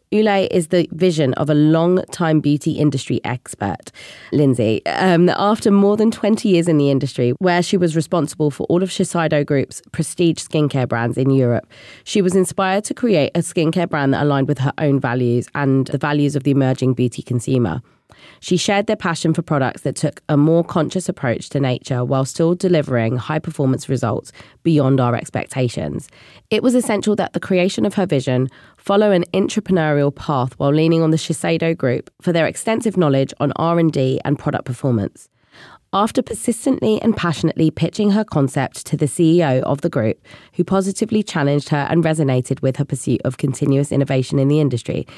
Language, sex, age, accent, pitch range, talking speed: English, female, 20-39, British, 130-175 Hz, 180 wpm